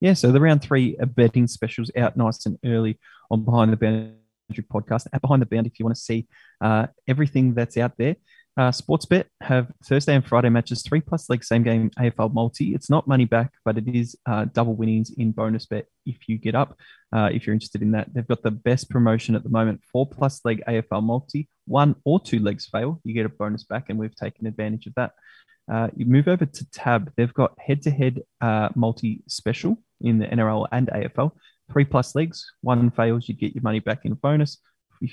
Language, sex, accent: English, male, Australian